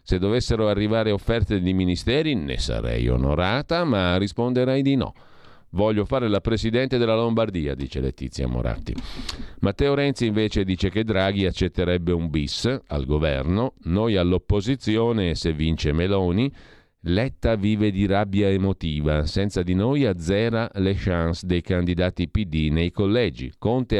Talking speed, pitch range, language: 140 wpm, 85-110 Hz, Italian